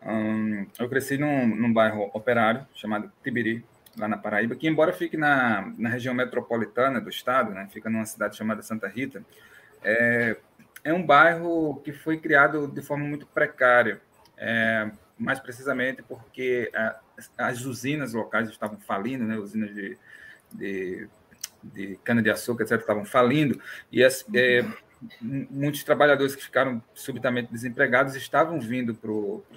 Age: 20-39